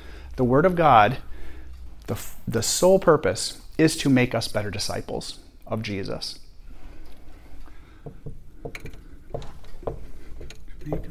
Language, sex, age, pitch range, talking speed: English, male, 30-49, 110-155 Hz, 90 wpm